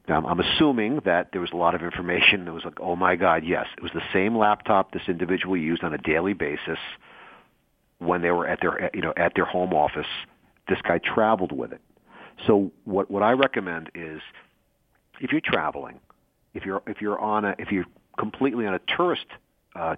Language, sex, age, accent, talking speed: English, male, 40-59, American, 200 wpm